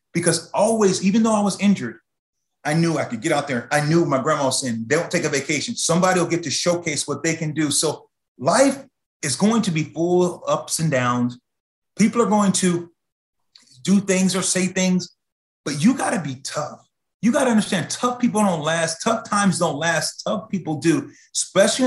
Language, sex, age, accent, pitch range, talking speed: English, male, 30-49, American, 150-195 Hz, 200 wpm